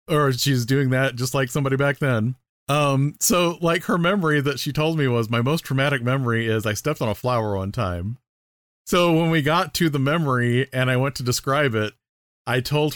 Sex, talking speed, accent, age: male, 215 wpm, American, 40-59